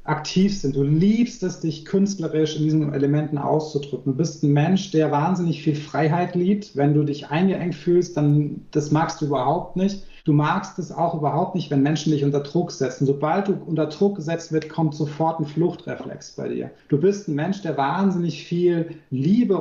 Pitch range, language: 145-175 Hz, German